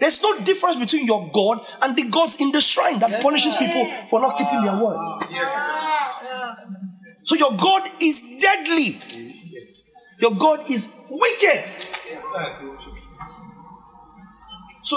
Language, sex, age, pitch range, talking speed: English, male, 30-49, 210-300 Hz, 120 wpm